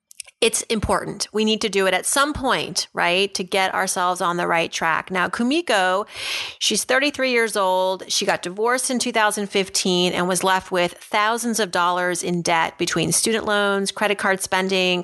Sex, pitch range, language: female, 185-220 Hz, English